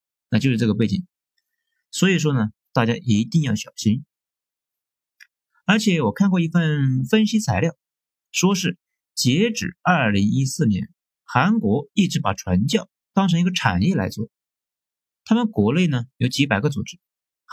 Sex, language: male, Chinese